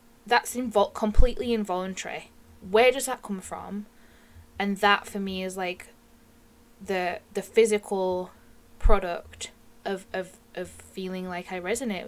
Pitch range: 175-205 Hz